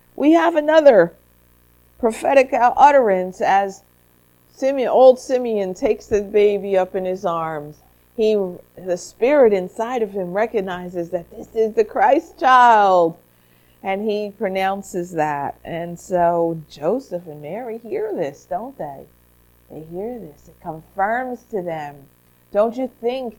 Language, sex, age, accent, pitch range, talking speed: English, female, 50-69, American, 160-240 Hz, 135 wpm